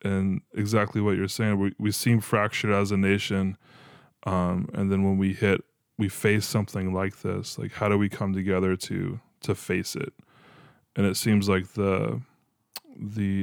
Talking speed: 175 wpm